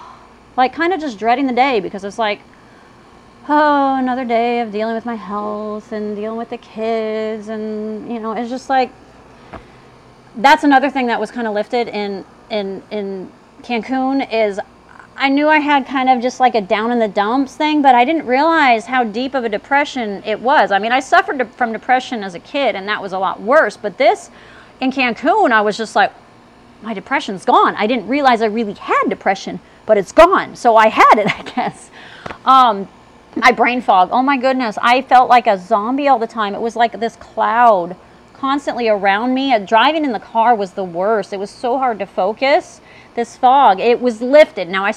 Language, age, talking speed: English, 30-49, 205 wpm